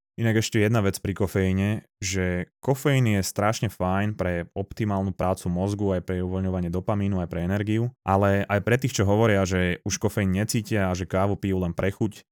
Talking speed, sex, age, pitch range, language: 190 wpm, male, 20-39, 95-110 Hz, Slovak